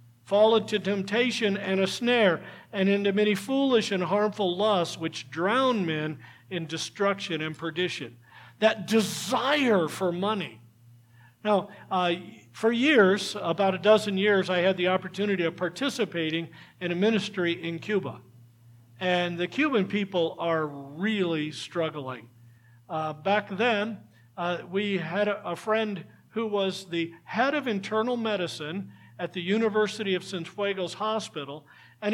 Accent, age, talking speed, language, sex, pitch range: American, 50-69, 135 wpm, English, male, 155-215 Hz